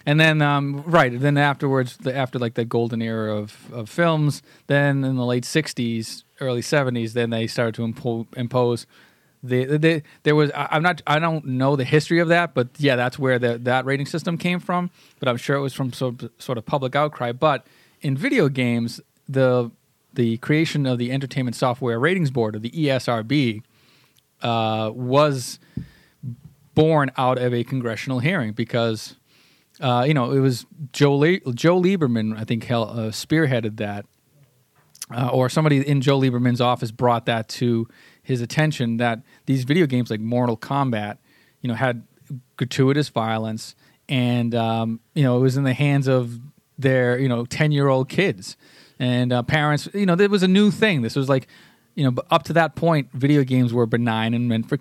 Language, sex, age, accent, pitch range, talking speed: English, male, 30-49, American, 120-145 Hz, 185 wpm